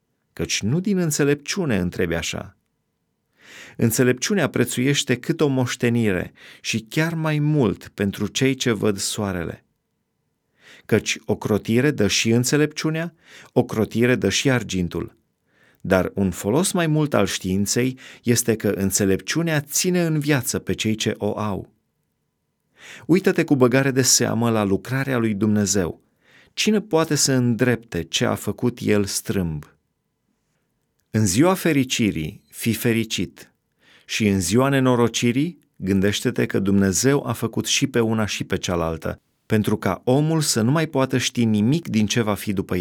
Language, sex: Romanian, male